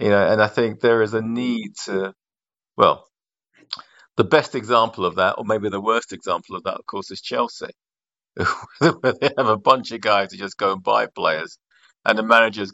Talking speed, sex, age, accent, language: 205 wpm, male, 40-59, British, English